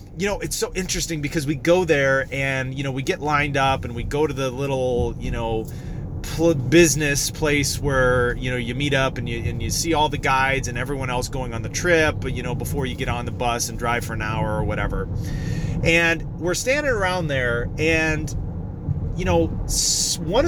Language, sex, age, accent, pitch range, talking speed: English, male, 30-49, American, 110-150 Hz, 210 wpm